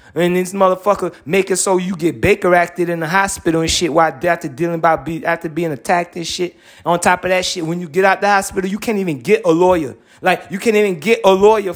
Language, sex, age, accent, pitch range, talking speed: English, male, 30-49, American, 170-210 Hz, 245 wpm